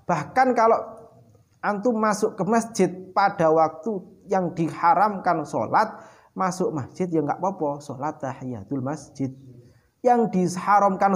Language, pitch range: Indonesian, 140-205 Hz